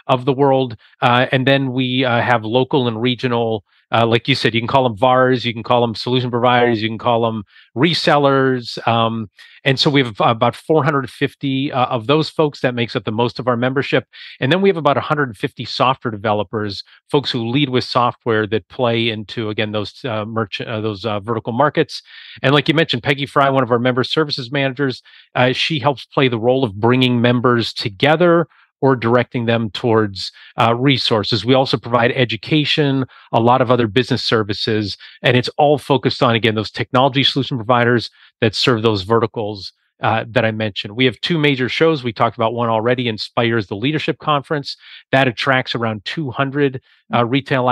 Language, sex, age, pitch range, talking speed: English, male, 40-59, 115-135 Hz, 190 wpm